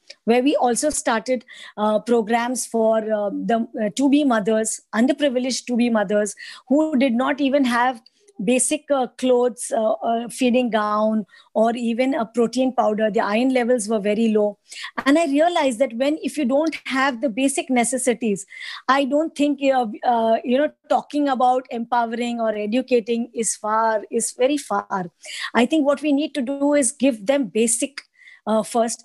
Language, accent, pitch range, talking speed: English, Indian, 220-275 Hz, 170 wpm